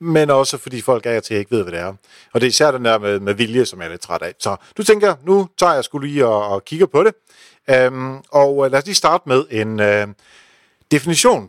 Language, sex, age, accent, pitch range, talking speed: Danish, male, 50-69, native, 110-155 Hz, 245 wpm